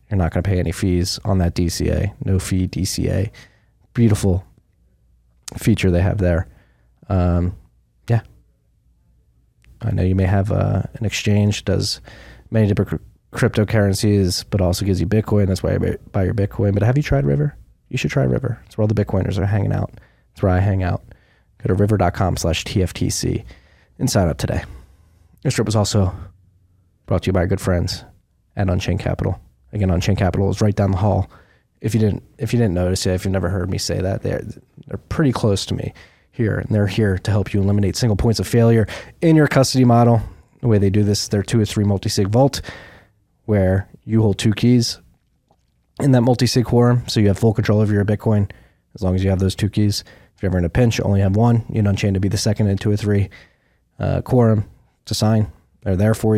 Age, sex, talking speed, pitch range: 20-39, male, 210 wpm, 95-110 Hz